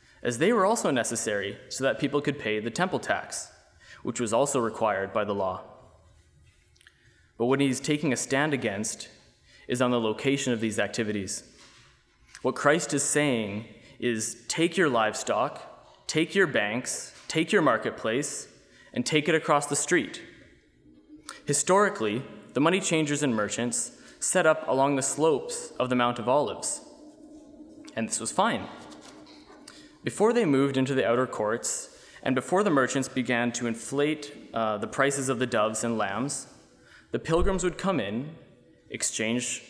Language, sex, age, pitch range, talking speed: English, male, 20-39, 115-150 Hz, 155 wpm